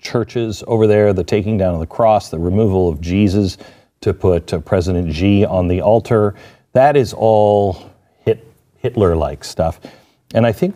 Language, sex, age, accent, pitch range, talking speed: English, male, 50-69, American, 100-130 Hz, 155 wpm